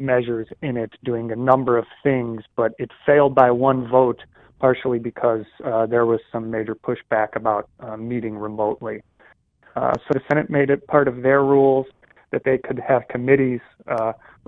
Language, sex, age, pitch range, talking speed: English, male, 30-49, 115-135 Hz, 175 wpm